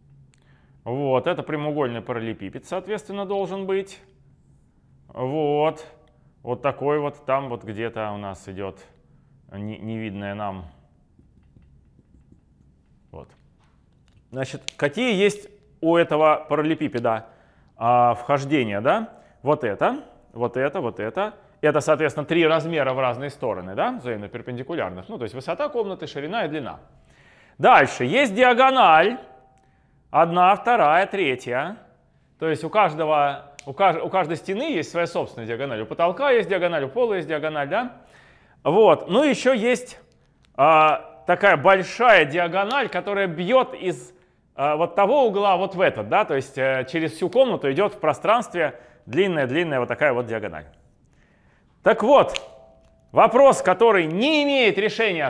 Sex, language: male, Russian